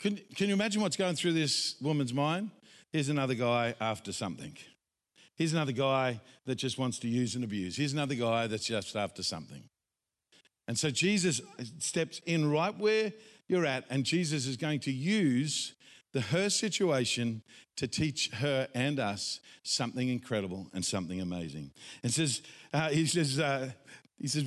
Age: 50-69